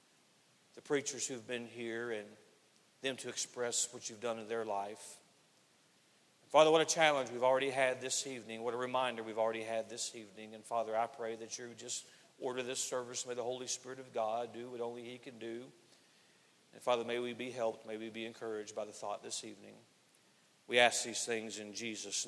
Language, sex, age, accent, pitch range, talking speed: English, male, 40-59, American, 120-140 Hz, 205 wpm